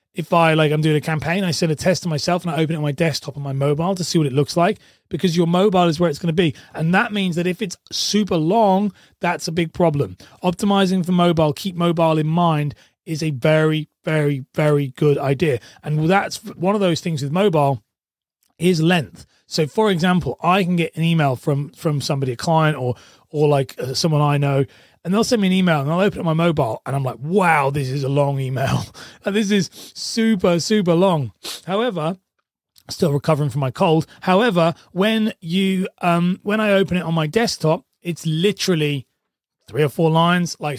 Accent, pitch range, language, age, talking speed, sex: British, 145-185 Hz, English, 30-49, 210 wpm, male